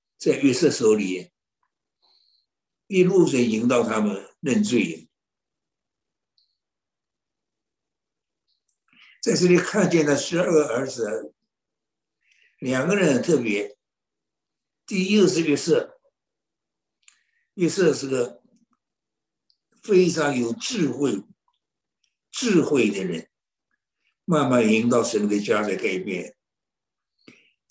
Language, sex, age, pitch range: Chinese, male, 60-79, 125-185 Hz